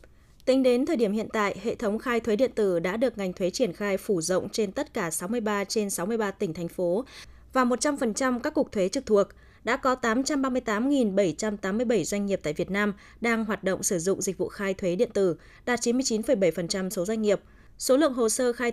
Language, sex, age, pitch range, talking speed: Vietnamese, female, 20-39, 195-245 Hz, 210 wpm